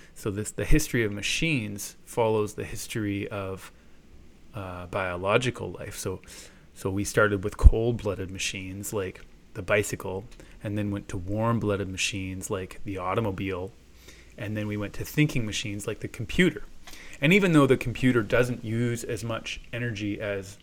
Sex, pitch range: male, 95-115 Hz